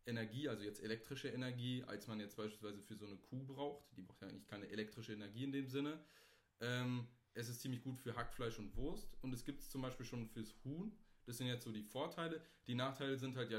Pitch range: 110-130 Hz